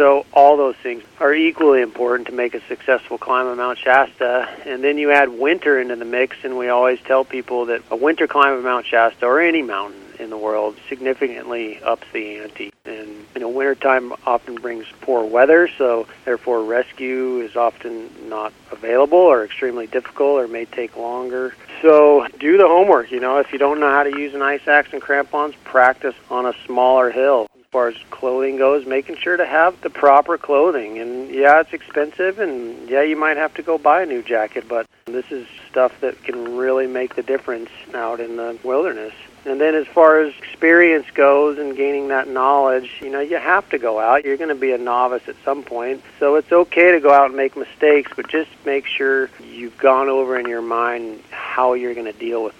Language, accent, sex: English, American, male